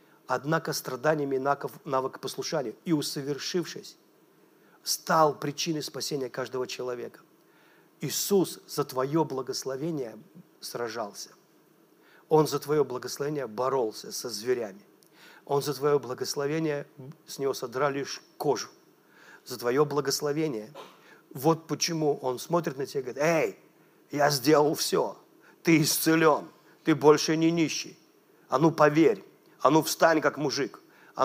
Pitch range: 140-170 Hz